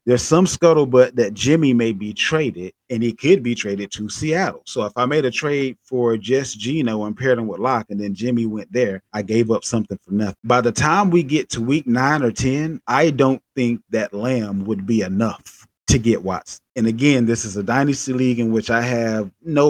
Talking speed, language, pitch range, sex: 220 wpm, English, 110-130 Hz, male